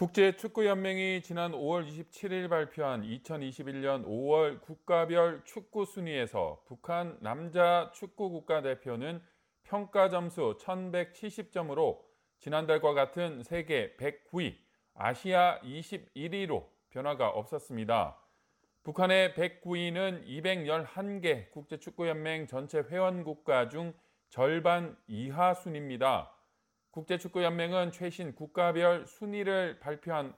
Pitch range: 150-185 Hz